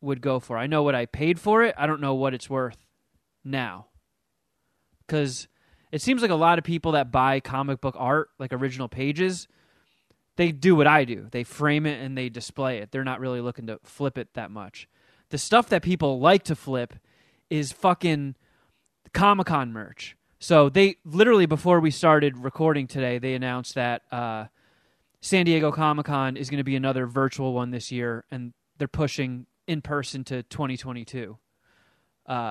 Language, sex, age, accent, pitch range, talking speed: English, male, 20-39, American, 130-165 Hz, 175 wpm